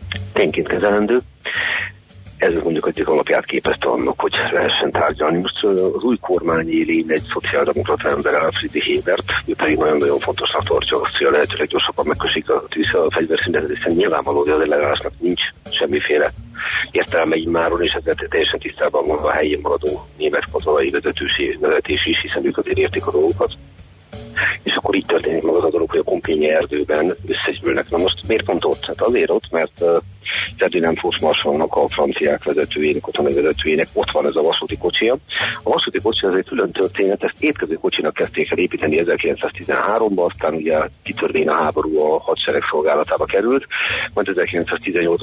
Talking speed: 155 wpm